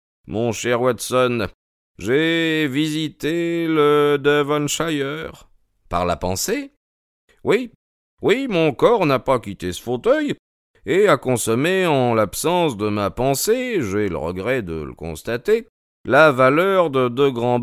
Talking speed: 140 wpm